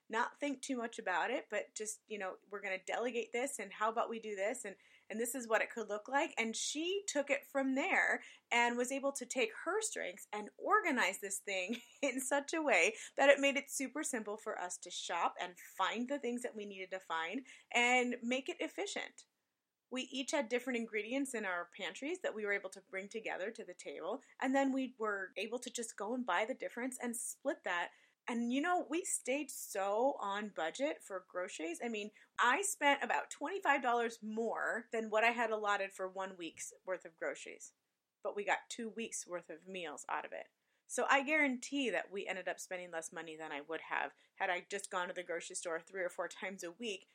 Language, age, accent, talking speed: English, 30-49, American, 220 wpm